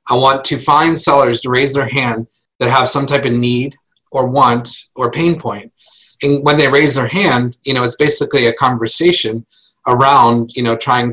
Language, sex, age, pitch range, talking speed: English, male, 30-49, 115-140 Hz, 195 wpm